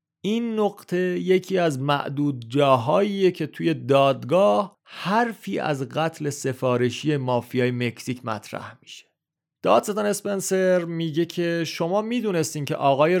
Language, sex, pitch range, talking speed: Persian, male, 130-175 Hz, 115 wpm